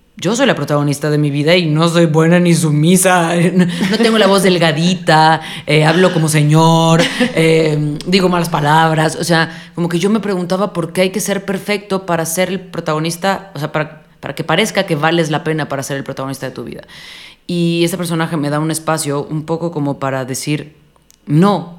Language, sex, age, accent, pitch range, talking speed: Spanish, female, 30-49, Mexican, 140-170 Hz, 200 wpm